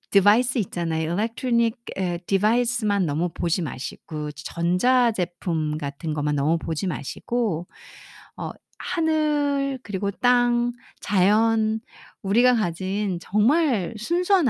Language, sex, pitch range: Korean, female, 175-245 Hz